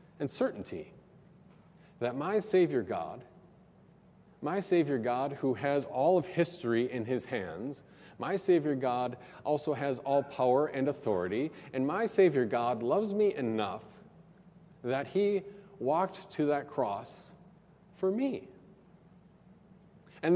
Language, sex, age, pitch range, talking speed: English, male, 40-59, 145-185 Hz, 125 wpm